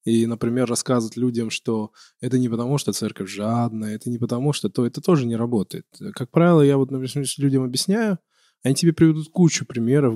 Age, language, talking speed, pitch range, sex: 20-39, Russian, 190 wpm, 120-155 Hz, male